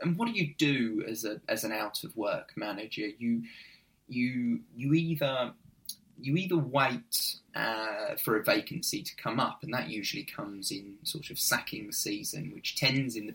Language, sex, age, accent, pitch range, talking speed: English, male, 20-39, British, 115-155 Hz, 180 wpm